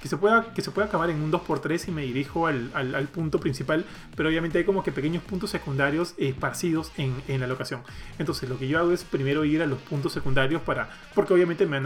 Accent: Argentinian